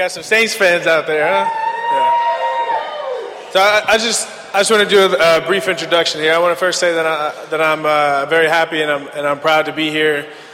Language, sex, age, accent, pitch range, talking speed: English, male, 20-39, American, 145-170 Hz, 240 wpm